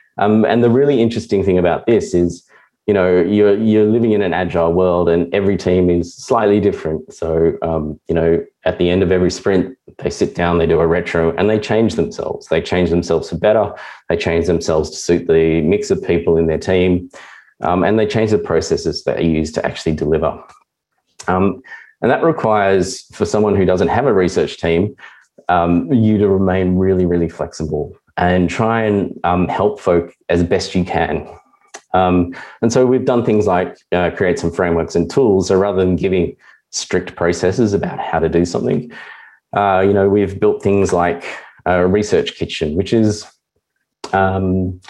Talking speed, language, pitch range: 185 wpm, English, 85-105 Hz